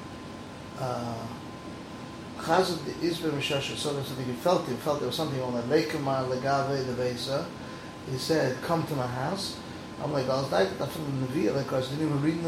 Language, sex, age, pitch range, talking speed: English, male, 30-49, 125-155 Hz, 120 wpm